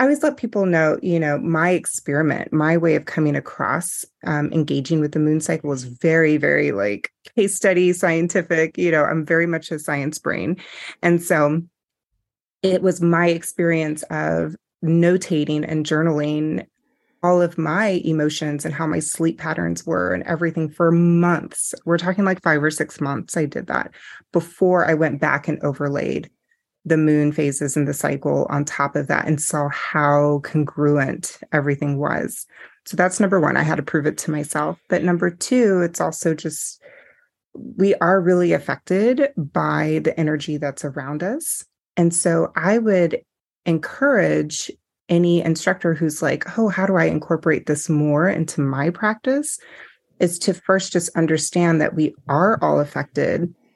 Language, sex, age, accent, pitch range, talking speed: English, female, 30-49, American, 150-175 Hz, 165 wpm